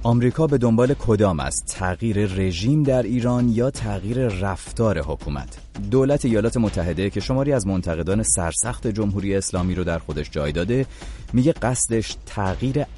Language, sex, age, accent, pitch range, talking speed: English, male, 30-49, Canadian, 80-115 Hz, 145 wpm